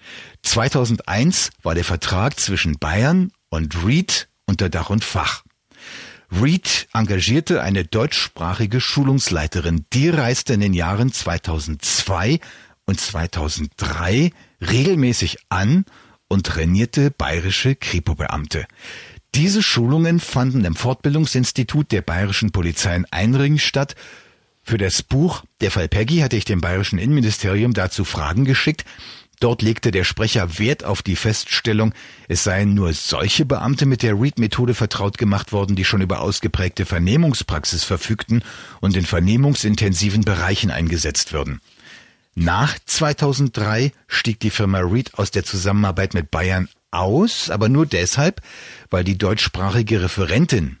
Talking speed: 125 wpm